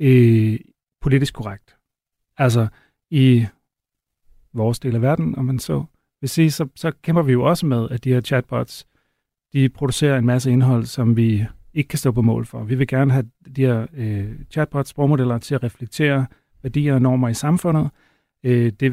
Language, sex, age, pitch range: Danish, male, 40-59, 120-140 Hz